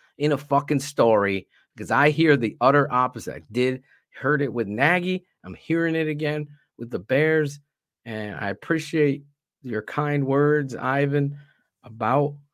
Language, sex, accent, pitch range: English, male, American, 120-155 Hz